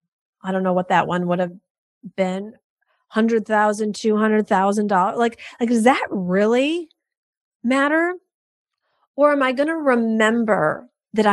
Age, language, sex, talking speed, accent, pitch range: 30-49, English, female, 145 wpm, American, 195-260 Hz